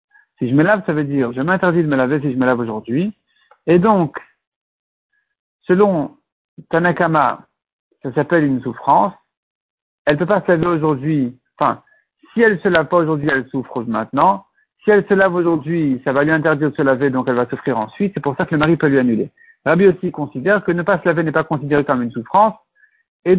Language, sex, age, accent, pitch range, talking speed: French, male, 60-79, French, 135-195 Hz, 215 wpm